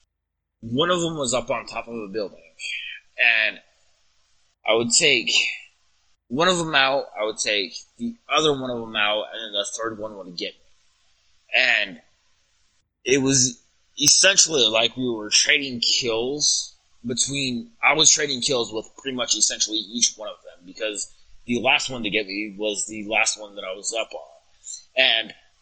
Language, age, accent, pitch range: English, 20-39, American, 105-140 Hz